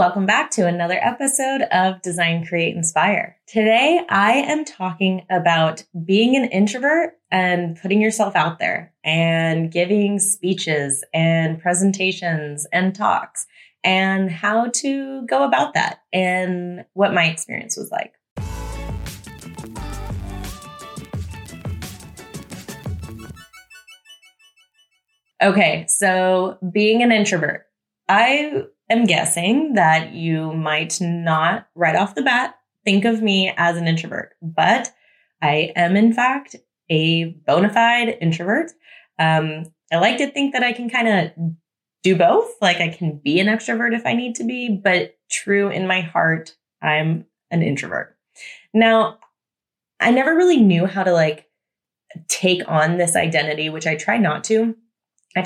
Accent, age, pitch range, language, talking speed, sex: American, 20-39, 165-225 Hz, English, 130 wpm, female